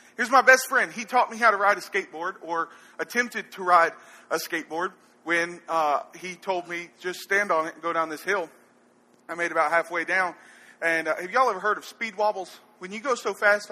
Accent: American